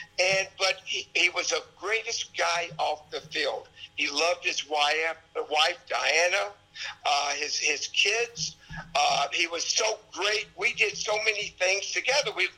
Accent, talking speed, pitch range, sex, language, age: American, 160 wpm, 165-220 Hz, male, English, 60-79